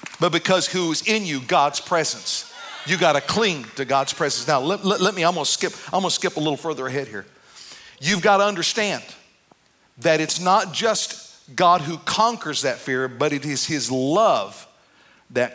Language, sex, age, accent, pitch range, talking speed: English, male, 50-69, American, 155-215 Hz, 180 wpm